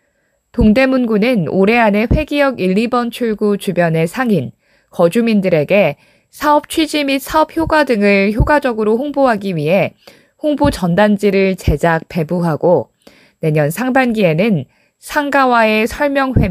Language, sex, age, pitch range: Korean, female, 20-39, 185-250 Hz